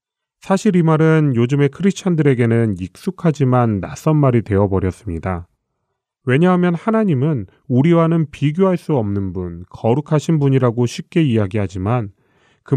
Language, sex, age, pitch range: Korean, male, 30-49, 105-150 Hz